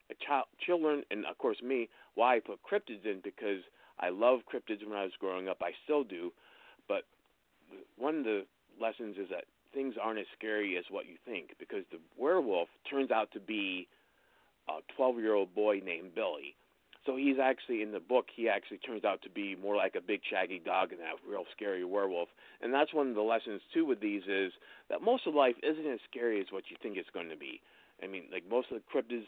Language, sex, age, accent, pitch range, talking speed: English, male, 50-69, American, 100-150 Hz, 215 wpm